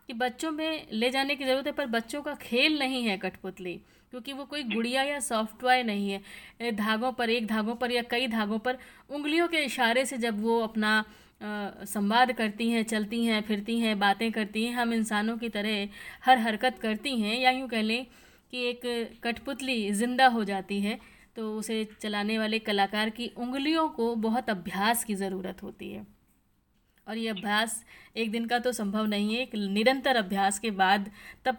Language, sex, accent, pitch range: Hindi, female, native, 205-245 Hz